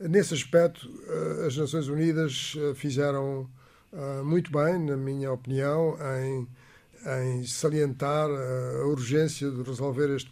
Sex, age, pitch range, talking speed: male, 50-69, 135-160 Hz, 105 wpm